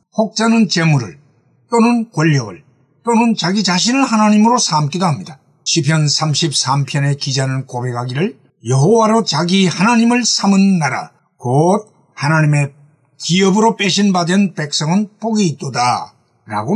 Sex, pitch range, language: male, 140-195 Hz, Korean